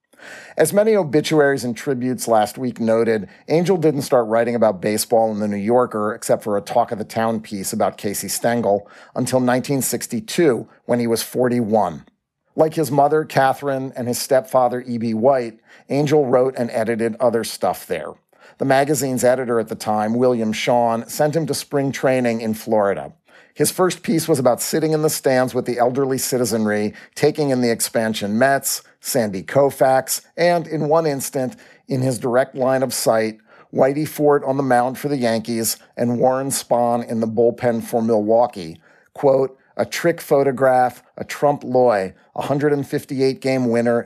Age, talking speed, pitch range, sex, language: 40-59, 165 wpm, 115-140 Hz, male, English